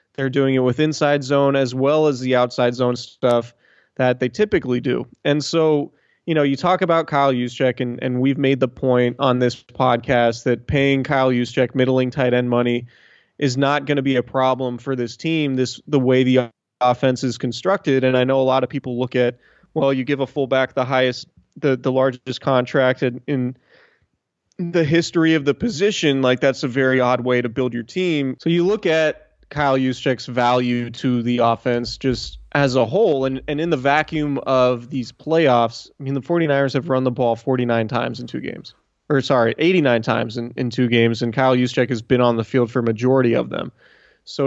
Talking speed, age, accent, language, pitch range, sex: 205 wpm, 20-39, American, English, 125-140 Hz, male